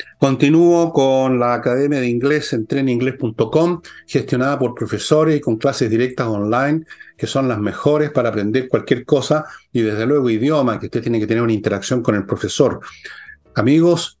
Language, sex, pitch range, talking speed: Spanish, male, 110-145 Hz, 160 wpm